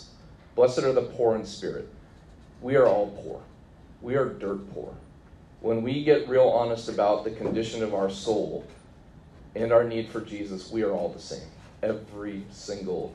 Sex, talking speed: male, 170 wpm